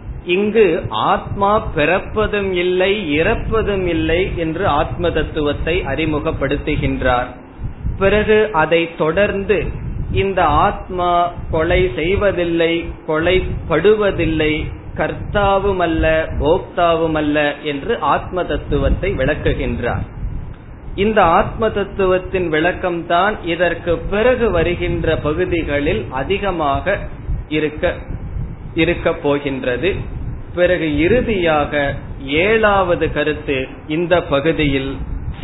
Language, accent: Tamil, native